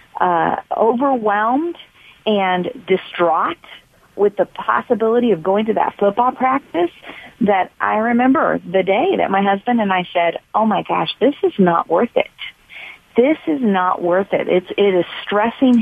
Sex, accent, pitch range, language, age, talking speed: female, American, 175-255 Hz, English, 40-59, 155 wpm